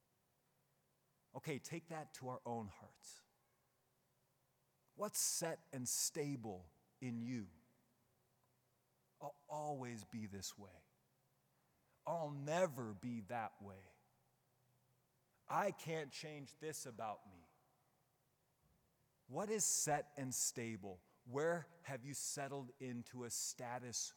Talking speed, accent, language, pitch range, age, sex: 100 wpm, American, English, 120-155 Hz, 30-49, male